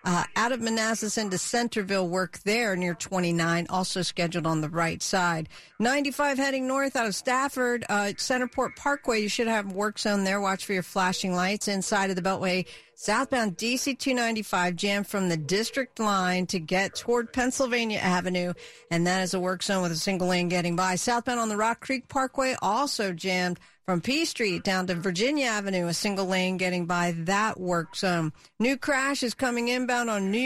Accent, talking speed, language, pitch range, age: American, 190 wpm, English, 185-240 Hz, 50-69